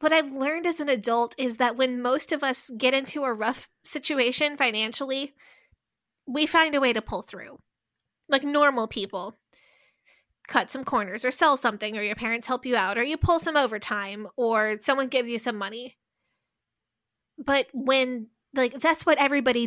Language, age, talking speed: English, 20-39, 175 wpm